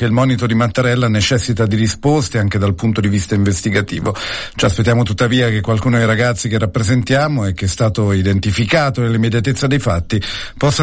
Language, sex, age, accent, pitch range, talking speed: Italian, male, 50-69, native, 105-125 Hz, 175 wpm